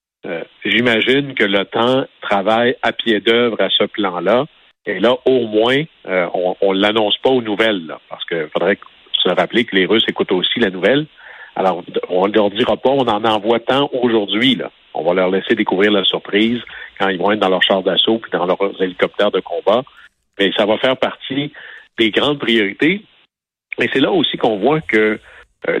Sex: male